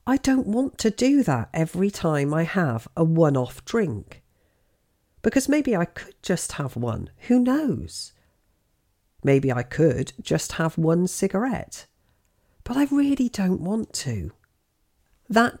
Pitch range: 115-185 Hz